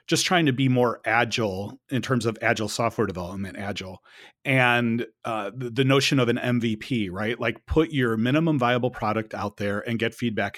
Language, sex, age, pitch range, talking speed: English, male, 40-59, 105-130 Hz, 180 wpm